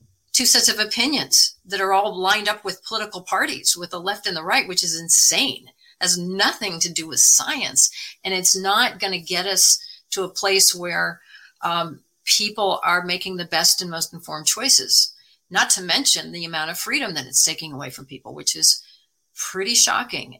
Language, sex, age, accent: English, female, 50-69, American